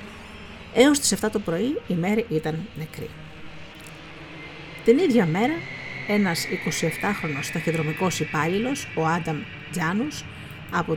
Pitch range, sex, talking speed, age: 155-220 Hz, female, 110 wpm, 50-69